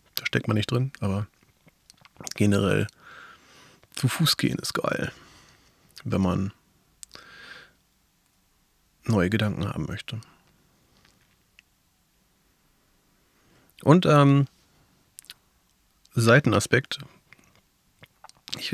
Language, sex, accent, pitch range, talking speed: German, male, German, 105-125 Hz, 70 wpm